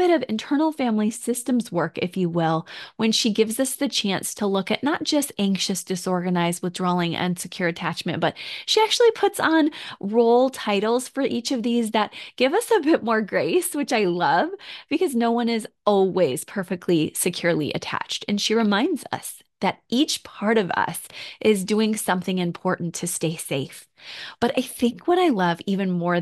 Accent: American